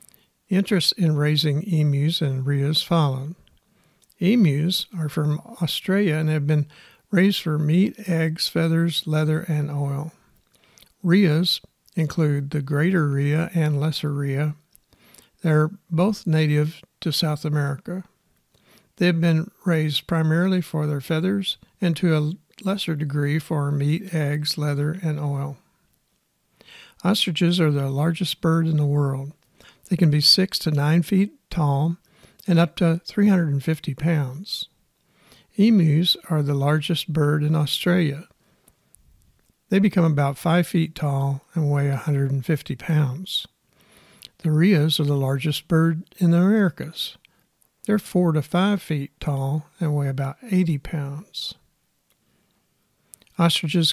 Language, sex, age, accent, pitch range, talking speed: English, male, 60-79, American, 150-175 Hz, 130 wpm